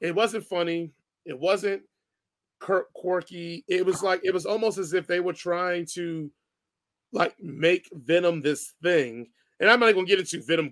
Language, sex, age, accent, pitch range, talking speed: English, male, 30-49, American, 165-225 Hz, 170 wpm